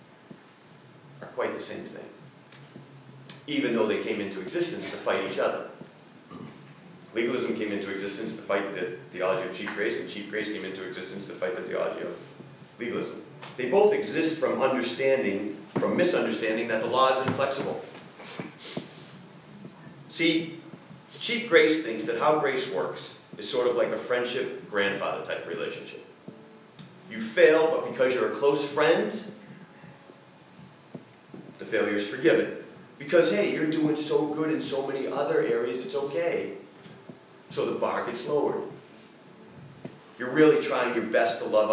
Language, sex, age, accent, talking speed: English, male, 40-59, American, 150 wpm